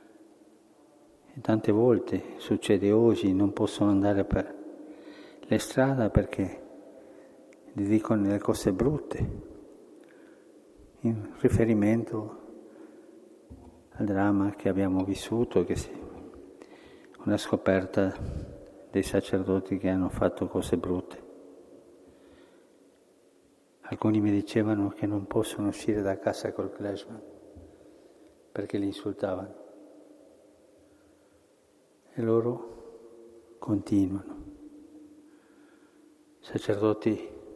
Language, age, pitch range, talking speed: Italian, 50-69, 100-140 Hz, 80 wpm